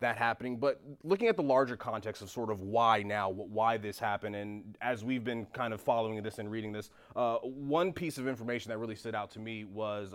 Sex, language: male, English